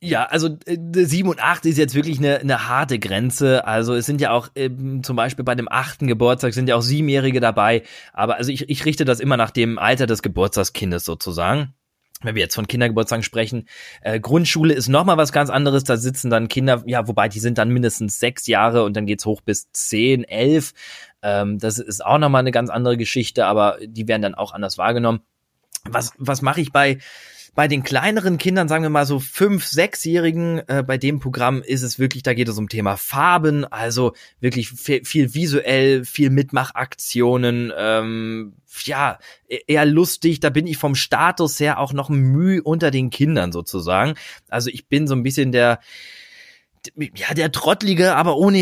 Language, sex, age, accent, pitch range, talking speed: German, male, 20-39, German, 115-150 Hz, 190 wpm